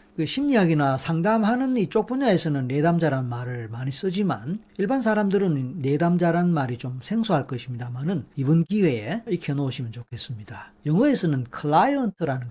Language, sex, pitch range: Korean, male, 130-195 Hz